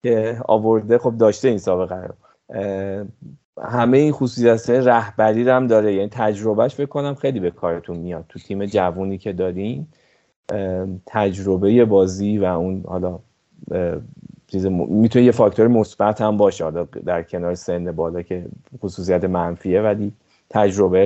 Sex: male